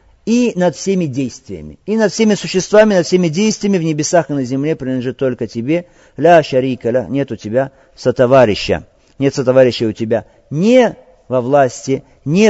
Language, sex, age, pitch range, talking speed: Russian, male, 50-69, 130-205 Hz, 155 wpm